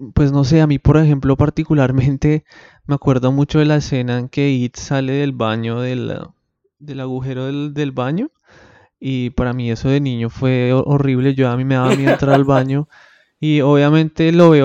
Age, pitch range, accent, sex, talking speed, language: 20-39, 130-150 Hz, Colombian, male, 195 wpm, Spanish